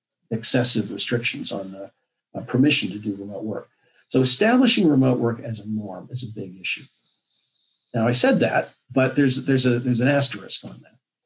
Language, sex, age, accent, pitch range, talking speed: English, male, 50-69, American, 105-130 Hz, 175 wpm